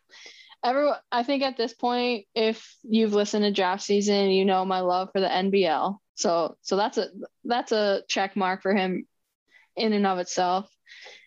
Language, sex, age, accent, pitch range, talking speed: English, female, 10-29, American, 190-230 Hz, 170 wpm